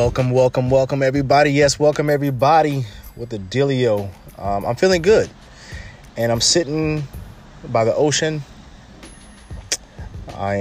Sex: male